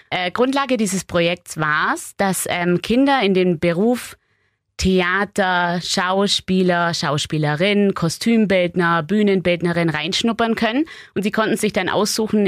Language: German